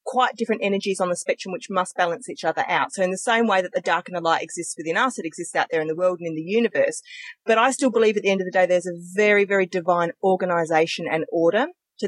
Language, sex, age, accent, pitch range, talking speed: English, female, 30-49, Australian, 185-245 Hz, 280 wpm